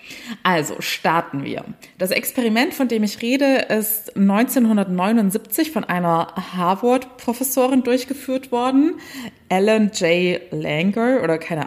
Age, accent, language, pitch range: 20-39, German, German, 185-240 Hz